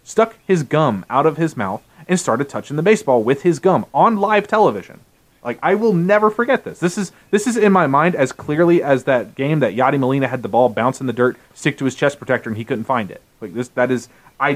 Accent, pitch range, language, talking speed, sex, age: American, 130-185 Hz, English, 250 wpm, male, 30-49